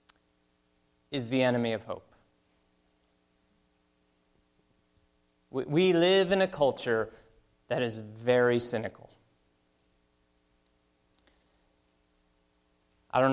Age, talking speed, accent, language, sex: 30-49, 70 wpm, American, English, male